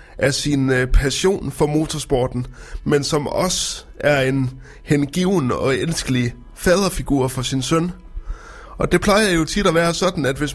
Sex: male